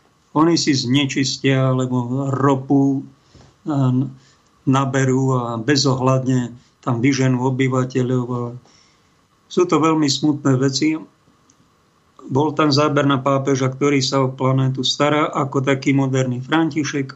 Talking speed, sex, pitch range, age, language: 110 wpm, male, 130-145 Hz, 50-69, Slovak